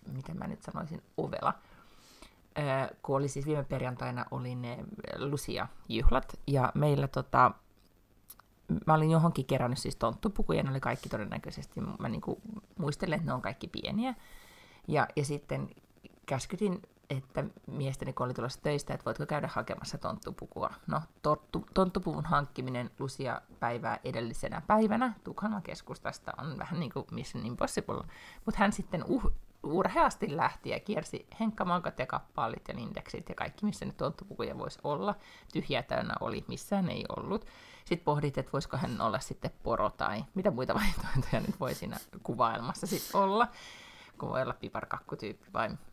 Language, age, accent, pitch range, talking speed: Finnish, 30-49, native, 130-195 Hz, 145 wpm